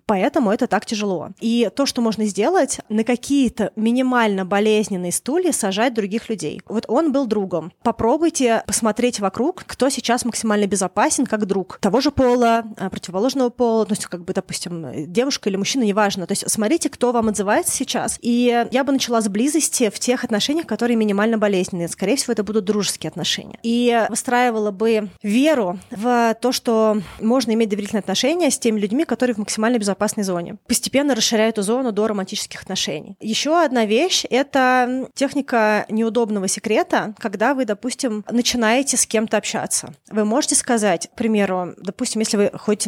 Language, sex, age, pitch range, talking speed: Russian, female, 20-39, 200-245 Hz, 170 wpm